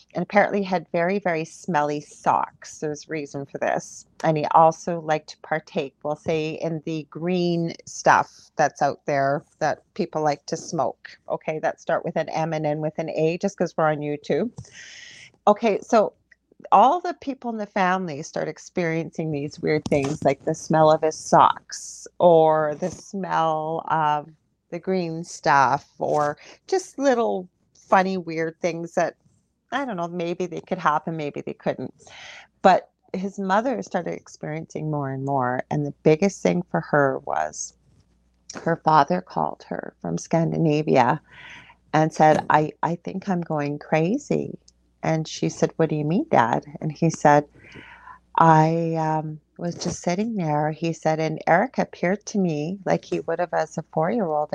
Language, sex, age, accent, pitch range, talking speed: English, female, 40-59, American, 150-180 Hz, 165 wpm